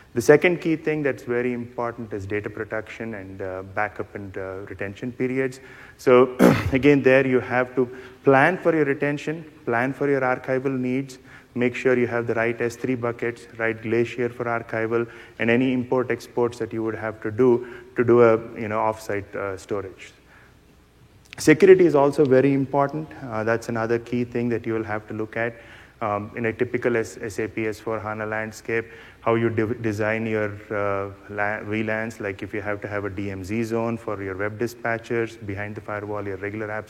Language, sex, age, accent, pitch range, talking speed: English, male, 30-49, Indian, 105-125 Hz, 180 wpm